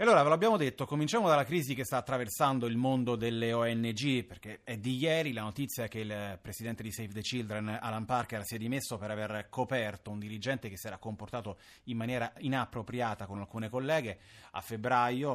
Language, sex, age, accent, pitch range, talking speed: Italian, male, 30-49, native, 105-130 Hz, 190 wpm